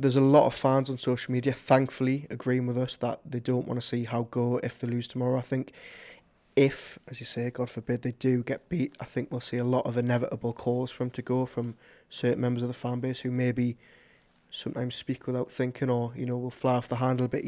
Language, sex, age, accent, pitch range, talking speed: English, male, 20-39, British, 125-135 Hz, 245 wpm